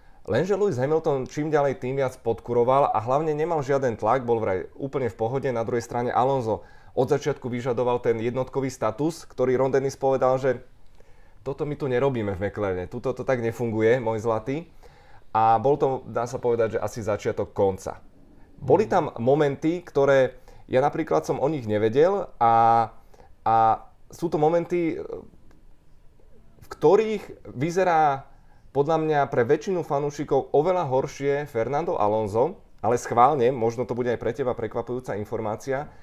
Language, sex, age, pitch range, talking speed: Czech, male, 30-49, 110-140 Hz, 155 wpm